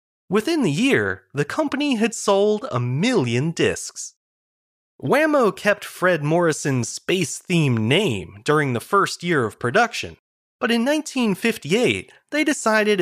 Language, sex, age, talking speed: English, male, 30-49, 125 wpm